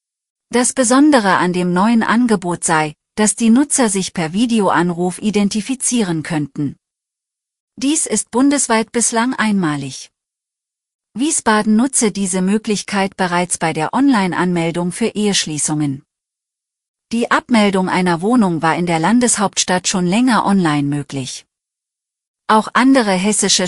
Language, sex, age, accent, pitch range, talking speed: German, female, 40-59, German, 175-225 Hz, 115 wpm